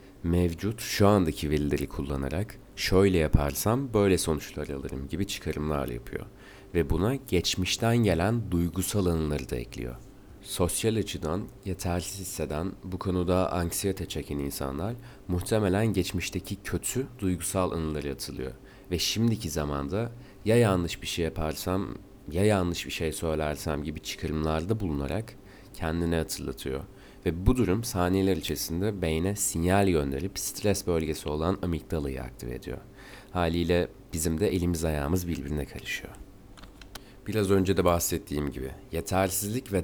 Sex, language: male, Turkish